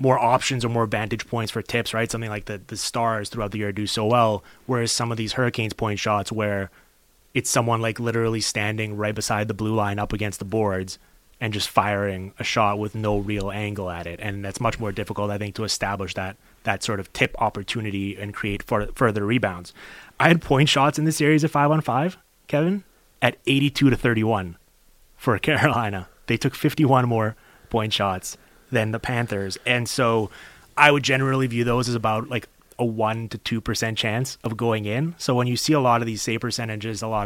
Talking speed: 210 wpm